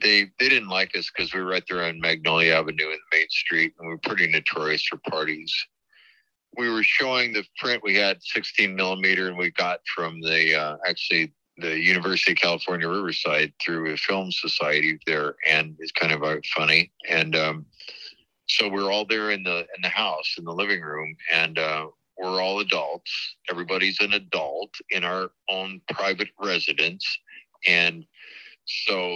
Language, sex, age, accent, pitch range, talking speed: English, male, 50-69, American, 80-95 Hz, 175 wpm